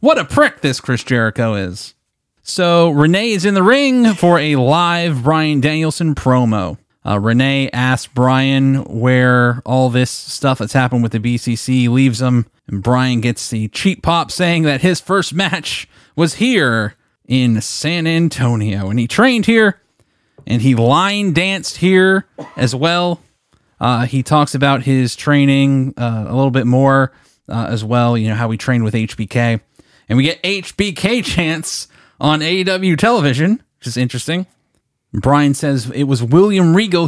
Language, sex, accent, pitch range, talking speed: English, male, American, 120-155 Hz, 160 wpm